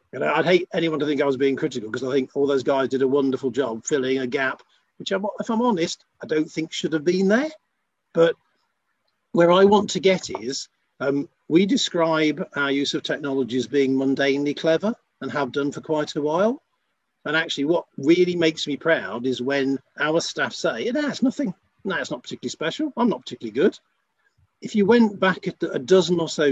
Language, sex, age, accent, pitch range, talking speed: English, male, 50-69, British, 130-175 Hz, 215 wpm